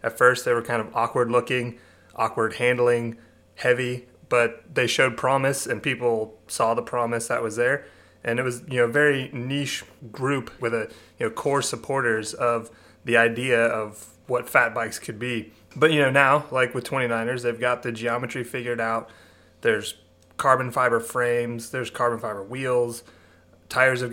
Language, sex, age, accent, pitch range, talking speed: English, male, 30-49, American, 110-125 Hz, 175 wpm